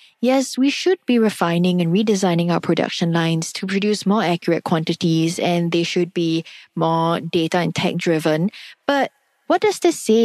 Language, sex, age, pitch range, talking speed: English, female, 20-39, 170-230 Hz, 170 wpm